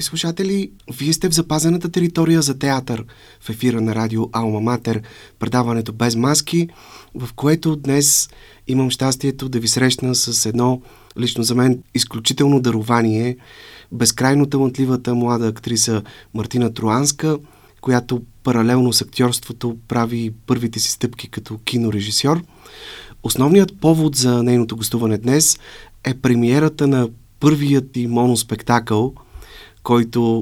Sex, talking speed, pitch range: male, 120 wpm, 115-135 Hz